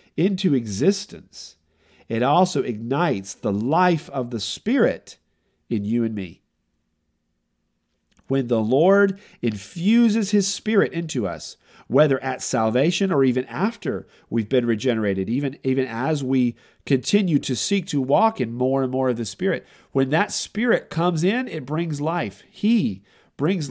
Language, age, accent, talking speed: English, 40-59, American, 145 wpm